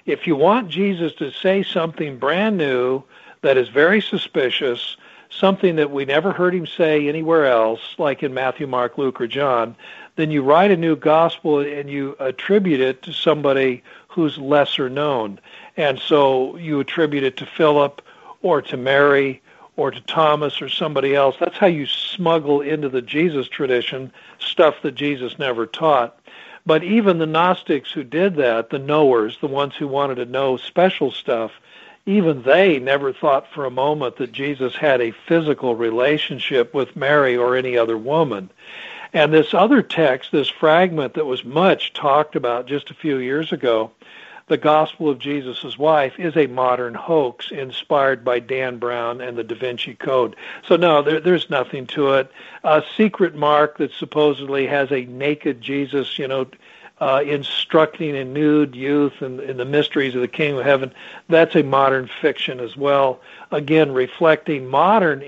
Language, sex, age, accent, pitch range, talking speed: English, male, 60-79, American, 130-160 Hz, 170 wpm